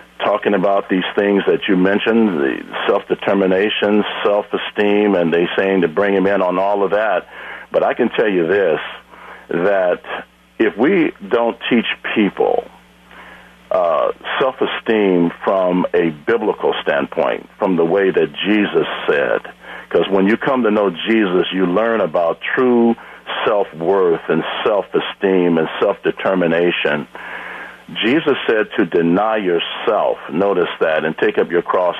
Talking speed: 135 wpm